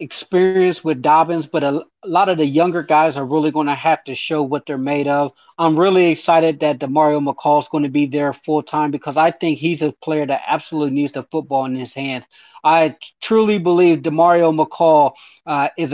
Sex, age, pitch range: male, 30-49, 145-165 Hz